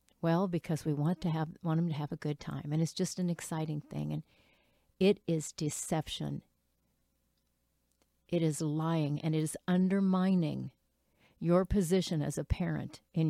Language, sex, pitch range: English, female, 150-180 Hz